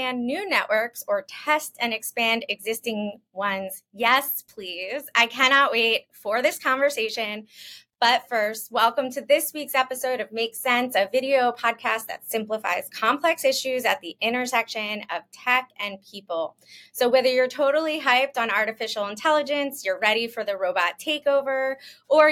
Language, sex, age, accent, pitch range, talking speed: English, female, 20-39, American, 210-270 Hz, 150 wpm